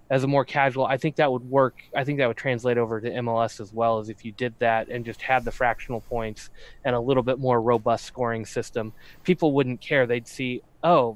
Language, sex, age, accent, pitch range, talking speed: English, male, 20-39, American, 115-135 Hz, 235 wpm